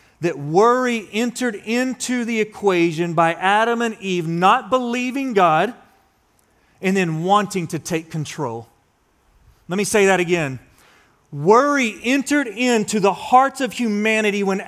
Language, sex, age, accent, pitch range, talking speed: English, male, 40-59, American, 195-255 Hz, 130 wpm